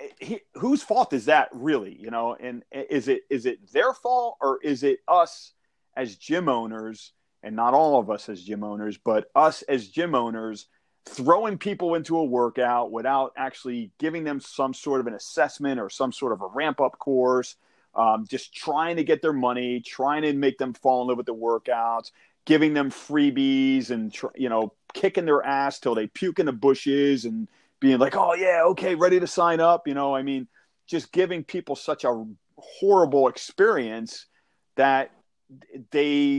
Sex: male